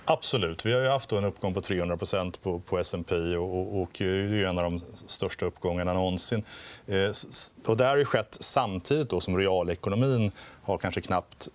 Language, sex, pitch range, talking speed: Swedish, male, 95-120 Hz, 170 wpm